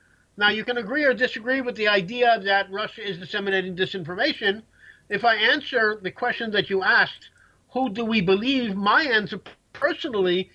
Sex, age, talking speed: male, 50-69, 165 wpm